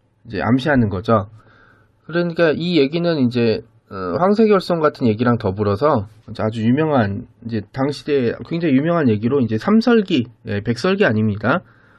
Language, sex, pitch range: Korean, male, 110-155 Hz